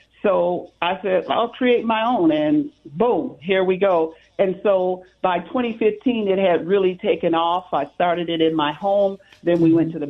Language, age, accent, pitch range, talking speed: English, 50-69, American, 170-215 Hz, 190 wpm